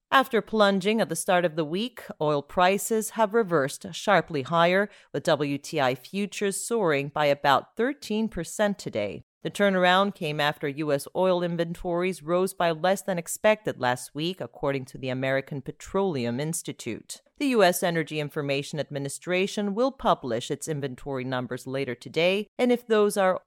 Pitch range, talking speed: 140-200 Hz, 150 wpm